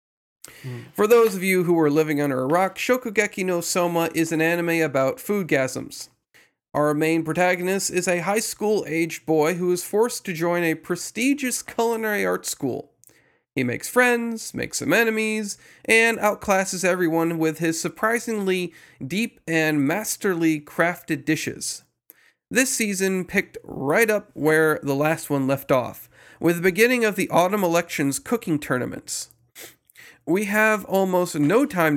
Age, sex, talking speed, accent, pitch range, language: 40-59, male, 150 wpm, American, 155-210 Hz, English